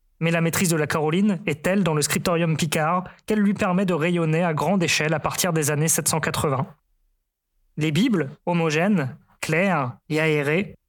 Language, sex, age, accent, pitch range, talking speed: French, male, 20-39, French, 150-190 Hz, 170 wpm